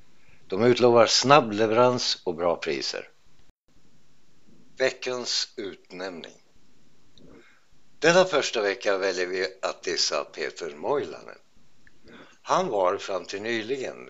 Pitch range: 365-415 Hz